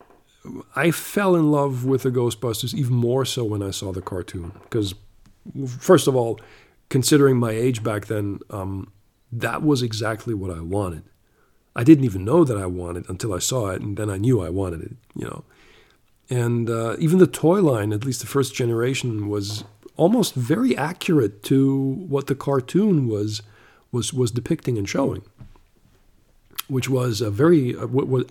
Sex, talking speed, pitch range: male, 180 wpm, 105-130 Hz